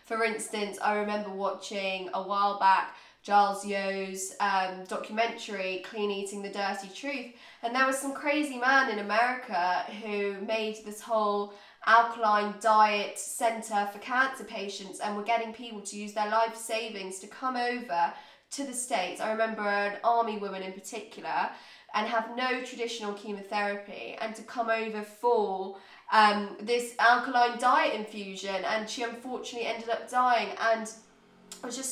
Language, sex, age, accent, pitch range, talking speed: English, female, 20-39, British, 200-235 Hz, 155 wpm